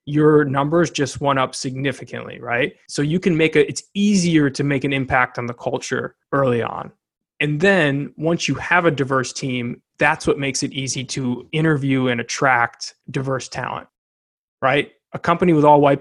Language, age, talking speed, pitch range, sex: English, 20-39, 180 wpm, 130-155 Hz, male